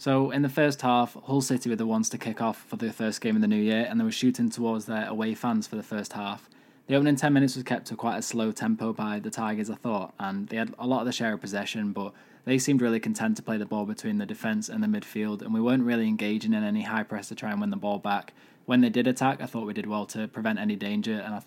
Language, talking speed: English, 295 wpm